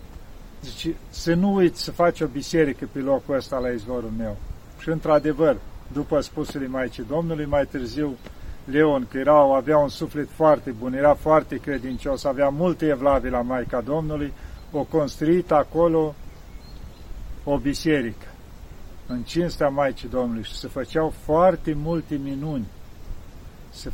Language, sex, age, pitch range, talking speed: Romanian, male, 50-69, 130-160 Hz, 140 wpm